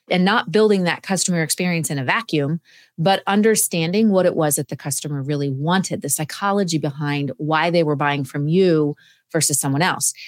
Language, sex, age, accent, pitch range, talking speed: English, female, 30-49, American, 150-195 Hz, 180 wpm